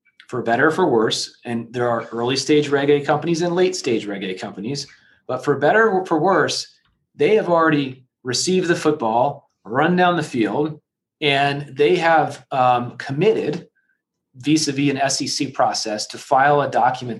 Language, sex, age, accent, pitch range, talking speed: English, male, 30-49, American, 125-155 Hz, 155 wpm